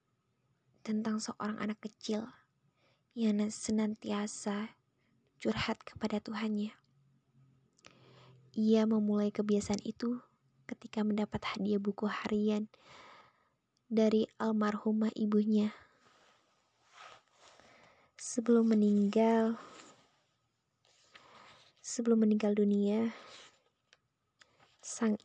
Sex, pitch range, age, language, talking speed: female, 210-235 Hz, 20-39, Indonesian, 65 wpm